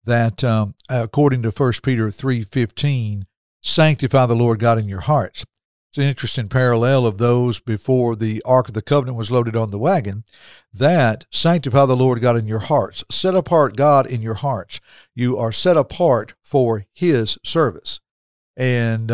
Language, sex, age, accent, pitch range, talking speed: English, male, 60-79, American, 115-135 Hz, 165 wpm